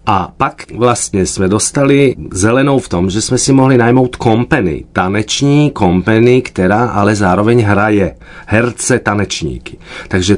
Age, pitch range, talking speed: 30-49, 100-130 Hz, 135 wpm